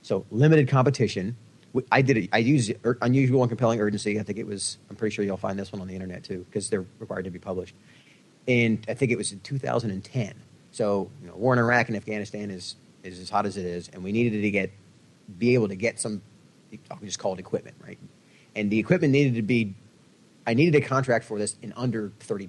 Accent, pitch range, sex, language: American, 100-125 Hz, male, English